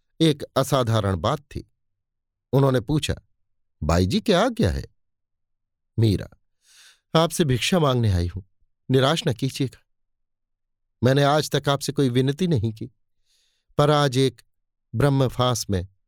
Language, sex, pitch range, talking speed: Hindi, male, 100-145 Hz, 125 wpm